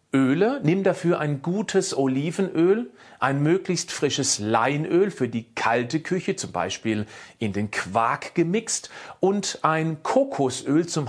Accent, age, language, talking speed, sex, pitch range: German, 40-59, German, 130 wpm, male, 130-180 Hz